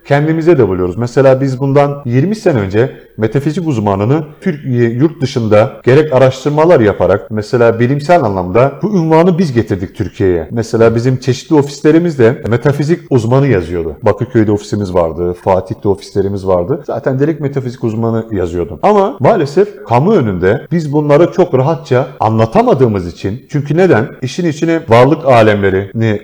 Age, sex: 40-59, male